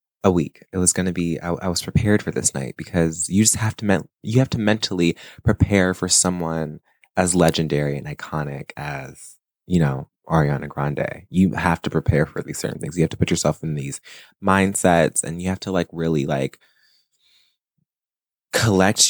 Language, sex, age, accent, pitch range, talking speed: English, male, 20-39, American, 80-110 Hz, 185 wpm